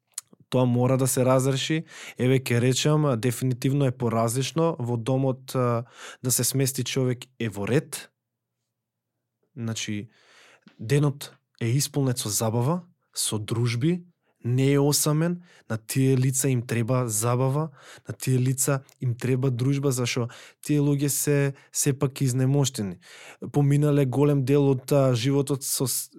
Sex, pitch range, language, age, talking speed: male, 125-150 Hz, English, 20-39, 125 wpm